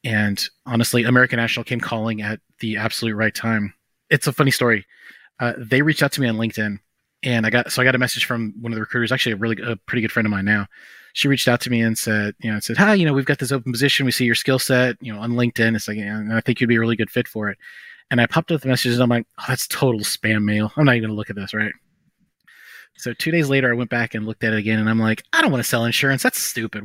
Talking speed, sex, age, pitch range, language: 295 wpm, male, 30-49, 110-130 Hz, English